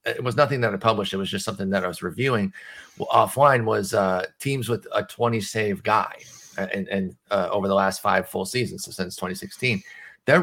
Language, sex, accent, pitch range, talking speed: English, male, American, 100-125 Hz, 215 wpm